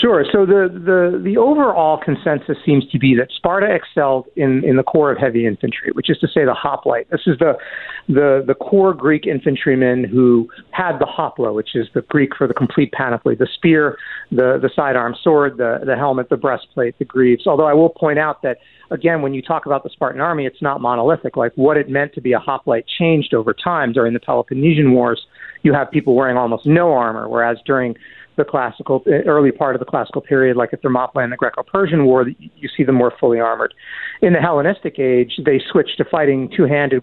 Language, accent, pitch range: English, American, 125-150 Hz